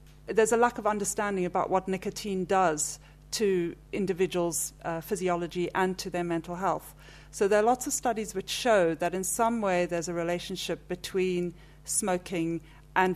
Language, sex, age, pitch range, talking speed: English, female, 50-69, 165-195 Hz, 165 wpm